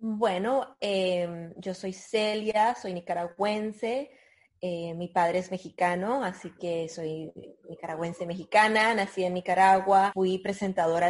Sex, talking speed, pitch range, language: female, 120 wpm, 175-215 Hz, Spanish